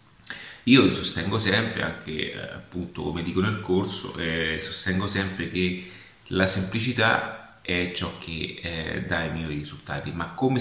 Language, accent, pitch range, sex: Italian, native, 80-95 Hz, male